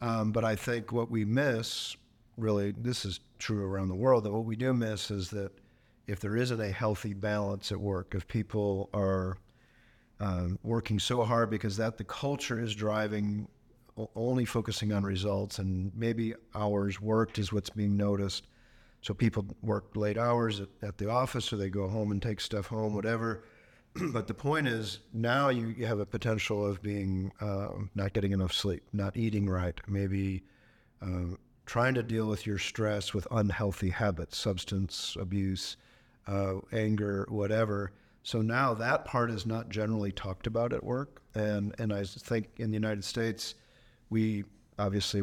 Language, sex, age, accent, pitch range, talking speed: English, male, 50-69, American, 100-115 Hz, 170 wpm